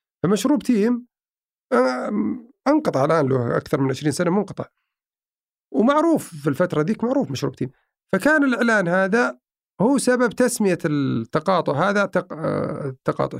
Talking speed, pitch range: 115 wpm, 135-210 Hz